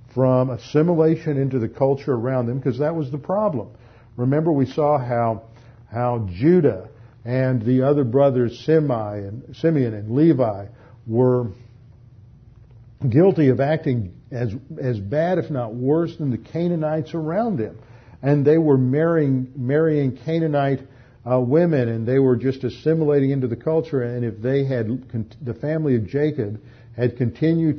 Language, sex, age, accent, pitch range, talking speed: English, male, 50-69, American, 115-145 Hz, 145 wpm